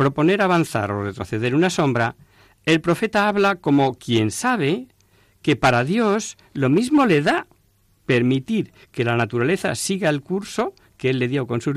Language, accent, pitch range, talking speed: Spanish, Spanish, 105-165 Hz, 165 wpm